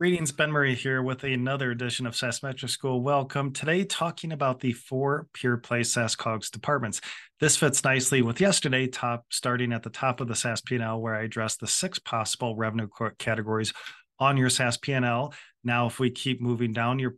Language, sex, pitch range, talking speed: English, male, 115-140 Hz, 190 wpm